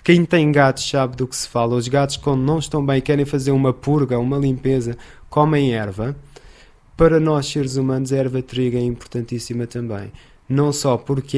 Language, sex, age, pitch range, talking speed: Portuguese, male, 20-39, 120-145 Hz, 180 wpm